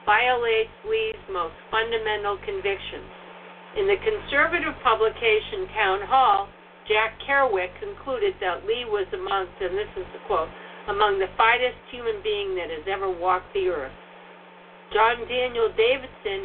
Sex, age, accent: female, 60-79, American